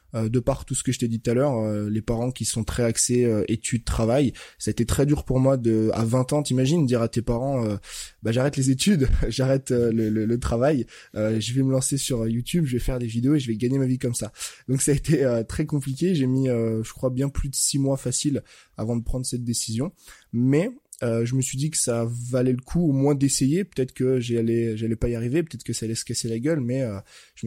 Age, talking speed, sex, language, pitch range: 20-39, 265 wpm, male, French, 115-135 Hz